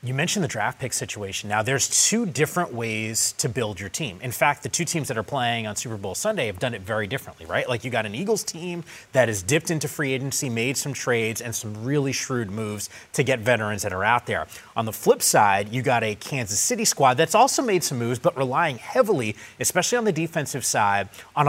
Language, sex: English, male